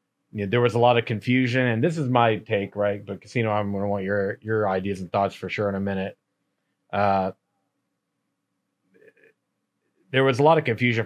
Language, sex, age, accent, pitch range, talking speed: English, male, 30-49, American, 100-120 Hz, 200 wpm